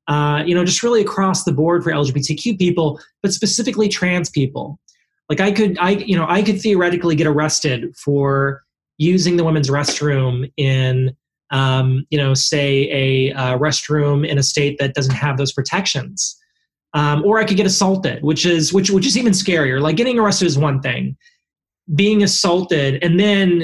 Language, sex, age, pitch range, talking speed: English, male, 20-39, 145-185 Hz, 180 wpm